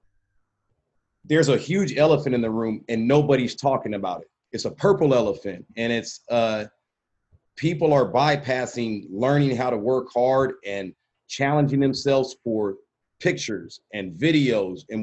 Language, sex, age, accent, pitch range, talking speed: English, male, 30-49, American, 105-130 Hz, 140 wpm